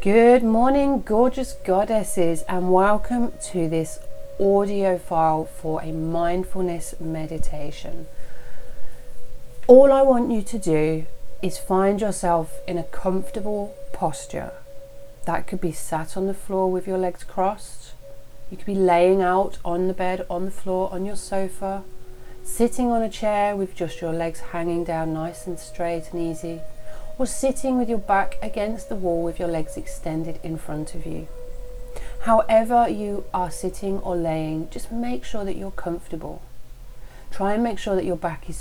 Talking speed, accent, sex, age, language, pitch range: 160 wpm, British, female, 30-49, English, 160-200 Hz